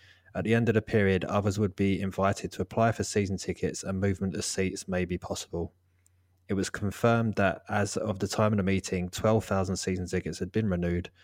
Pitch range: 90-105 Hz